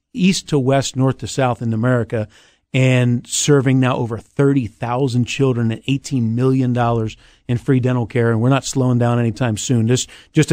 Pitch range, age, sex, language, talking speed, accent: 115-135 Hz, 50-69, male, English, 190 wpm, American